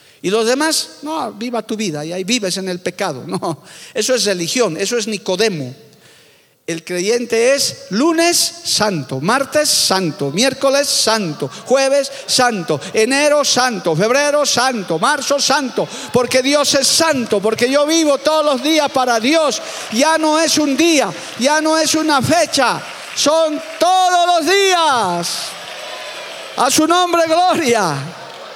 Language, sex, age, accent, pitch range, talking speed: Spanish, male, 50-69, Spanish, 180-265 Hz, 140 wpm